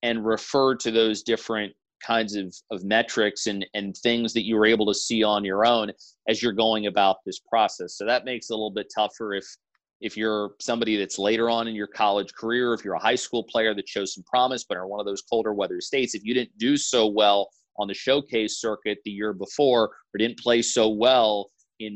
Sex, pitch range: male, 105-120 Hz